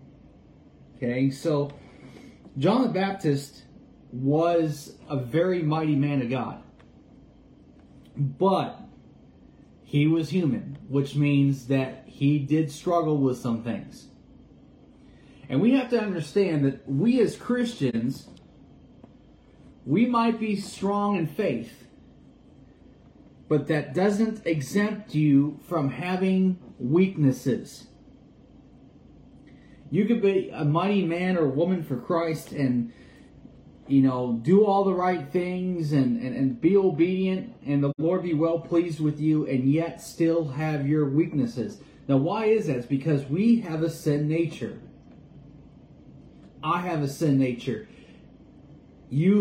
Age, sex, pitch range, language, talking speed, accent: 30-49, male, 140-180 Hz, English, 125 wpm, American